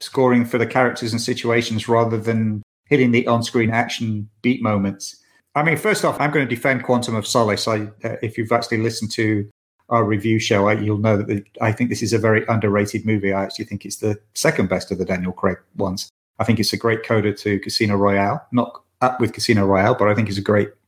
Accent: British